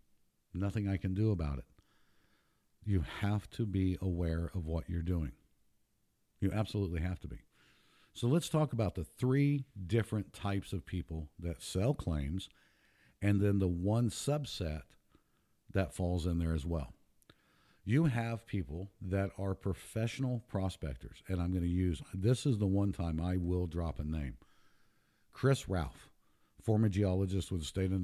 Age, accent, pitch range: 50-69, American, 85-105 Hz